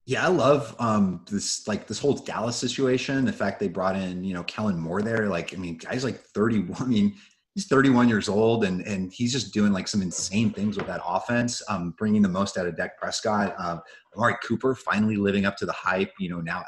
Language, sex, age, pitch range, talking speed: English, male, 30-49, 95-125 Hz, 230 wpm